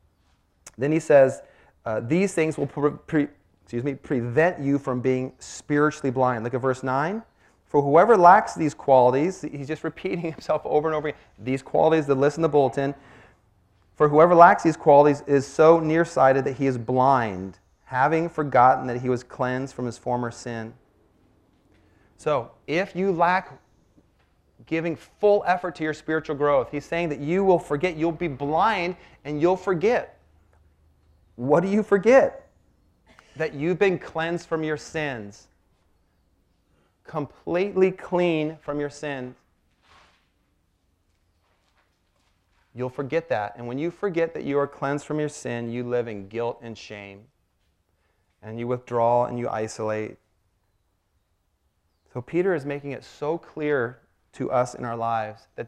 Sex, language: male, English